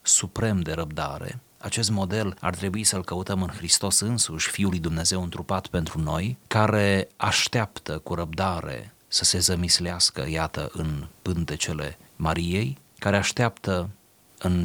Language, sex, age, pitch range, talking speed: Romanian, male, 30-49, 85-110 Hz, 130 wpm